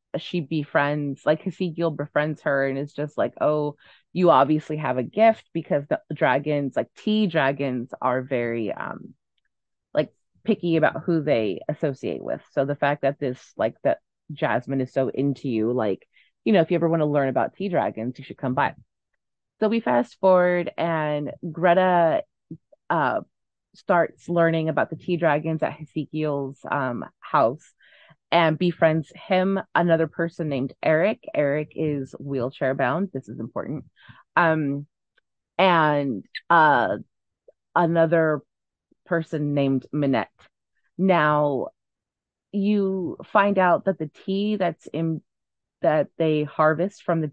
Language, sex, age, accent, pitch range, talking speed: English, female, 20-39, American, 140-175 Hz, 140 wpm